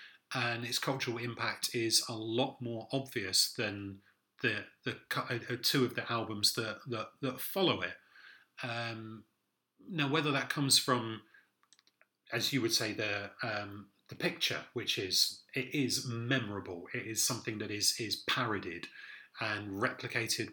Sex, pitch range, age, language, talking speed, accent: male, 115-130 Hz, 30-49, English, 145 wpm, British